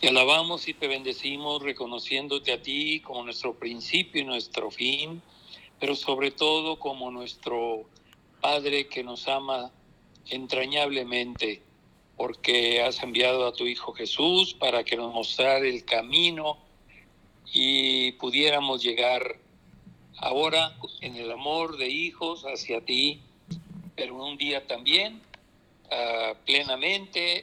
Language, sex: Spanish, male